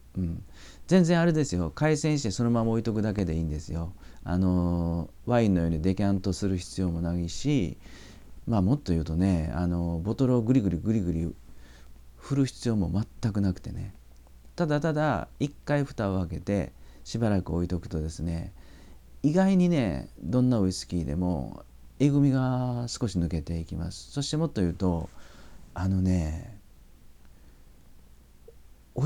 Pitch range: 80-115 Hz